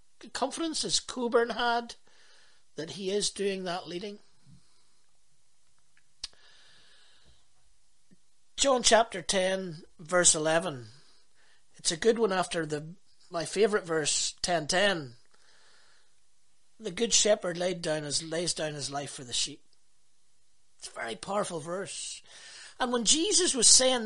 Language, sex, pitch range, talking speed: English, male, 170-230 Hz, 120 wpm